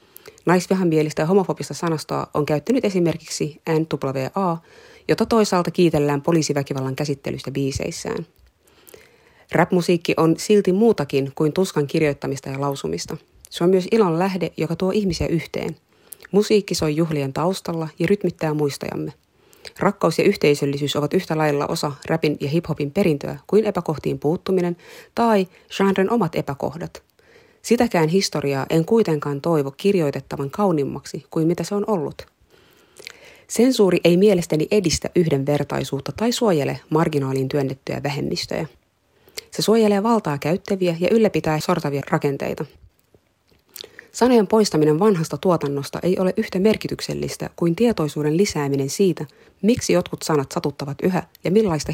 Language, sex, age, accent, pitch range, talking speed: Finnish, female, 30-49, native, 145-195 Hz, 120 wpm